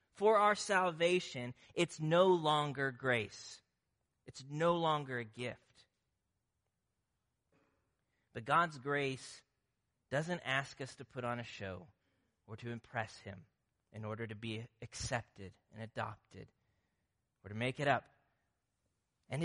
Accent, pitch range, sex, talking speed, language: American, 110-140 Hz, male, 125 wpm, English